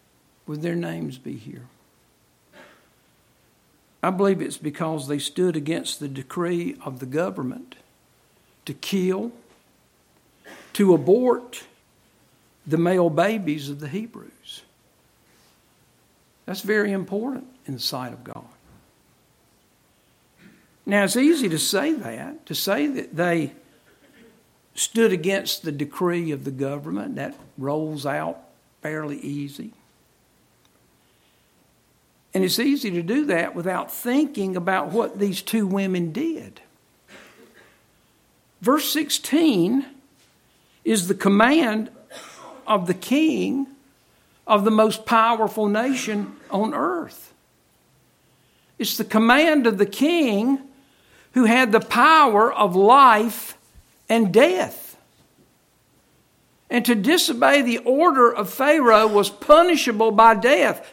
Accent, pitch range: American, 175-260 Hz